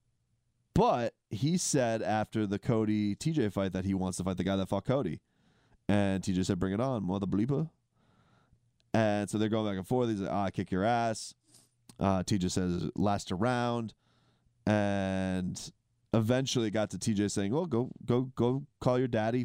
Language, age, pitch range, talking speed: English, 30-49, 100-120 Hz, 180 wpm